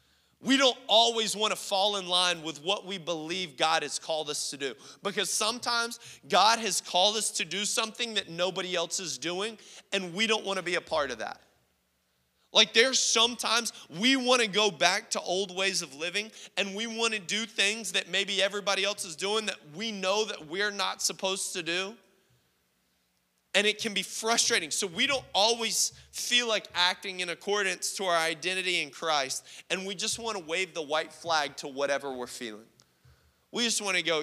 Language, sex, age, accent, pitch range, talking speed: English, male, 30-49, American, 150-205 Hz, 190 wpm